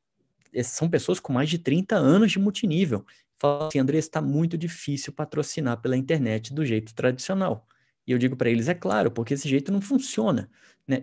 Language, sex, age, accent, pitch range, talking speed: Portuguese, male, 20-39, Brazilian, 130-190 Hz, 185 wpm